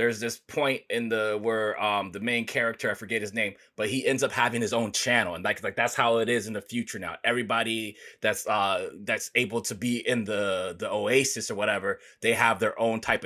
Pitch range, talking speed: 110-130 Hz, 230 wpm